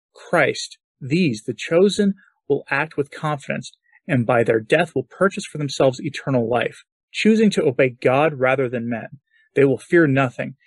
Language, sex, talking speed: English, male, 165 wpm